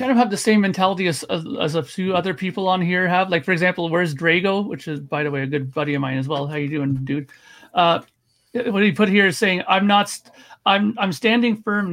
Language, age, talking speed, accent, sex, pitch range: English, 40-59, 255 wpm, American, male, 150-190 Hz